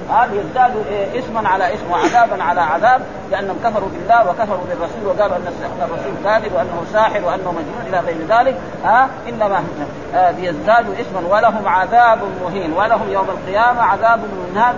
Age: 40-59